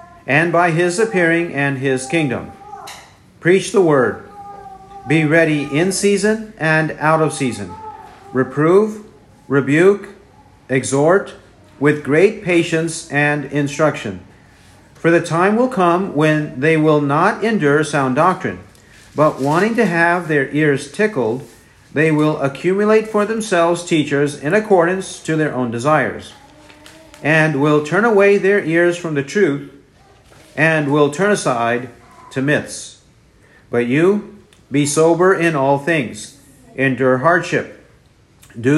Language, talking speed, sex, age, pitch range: English, 125 wpm, male, 50-69, 140-175 Hz